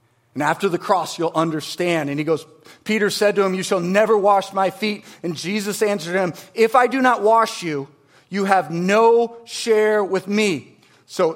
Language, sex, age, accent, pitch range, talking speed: English, male, 40-59, American, 165-250 Hz, 190 wpm